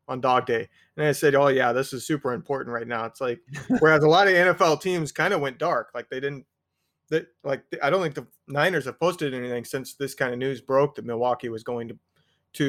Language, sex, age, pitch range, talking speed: English, male, 30-49, 120-155 Hz, 240 wpm